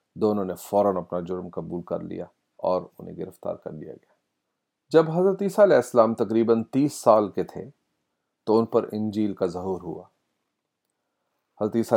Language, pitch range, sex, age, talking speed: Urdu, 95-115 Hz, male, 40-59, 155 wpm